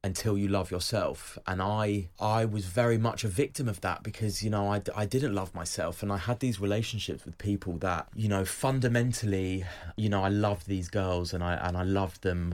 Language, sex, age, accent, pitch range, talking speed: English, male, 20-39, British, 95-115 Hz, 215 wpm